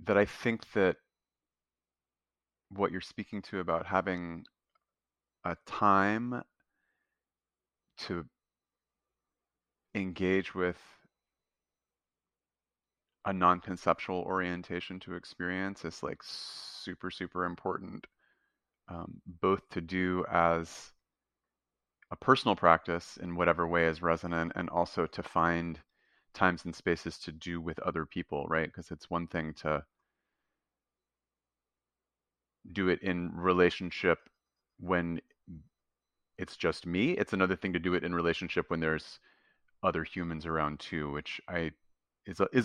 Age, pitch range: 30-49, 80-95 Hz